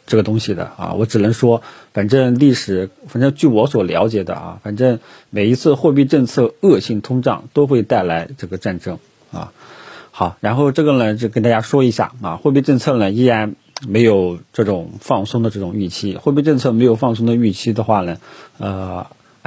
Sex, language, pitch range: male, Chinese, 105-130 Hz